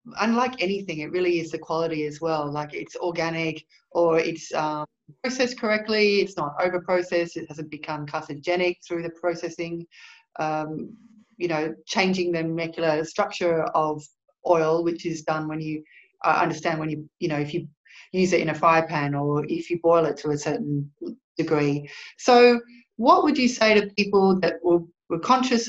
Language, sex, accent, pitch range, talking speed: English, female, Australian, 160-195 Hz, 175 wpm